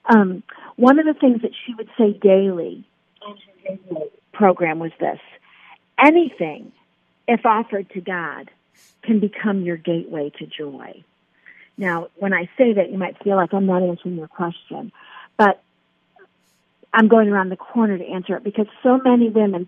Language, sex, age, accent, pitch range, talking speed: English, female, 50-69, American, 175-230 Hz, 160 wpm